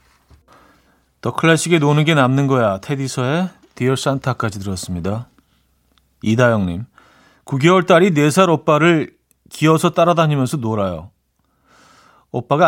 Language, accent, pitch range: Korean, native, 105-155 Hz